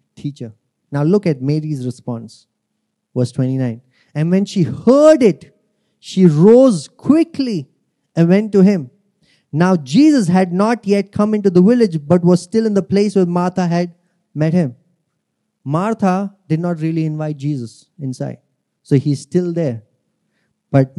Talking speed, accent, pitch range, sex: 150 wpm, Indian, 150-205 Hz, male